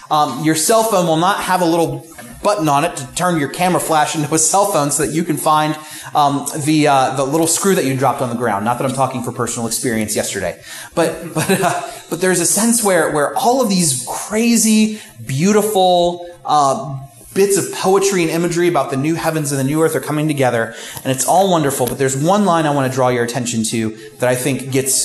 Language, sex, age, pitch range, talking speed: English, male, 30-49, 130-170 Hz, 230 wpm